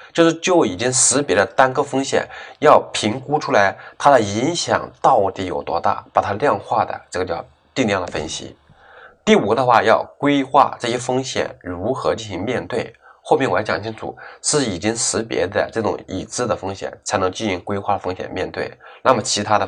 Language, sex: Chinese, male